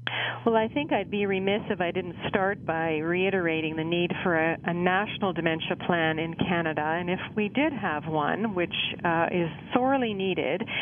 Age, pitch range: 50-69, 175-225 Hz